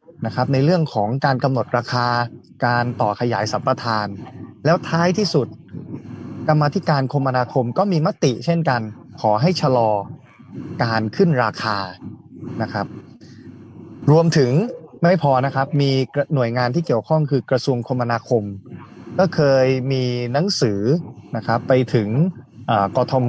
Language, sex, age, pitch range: Thai, male, 20-39, 115-155 Hz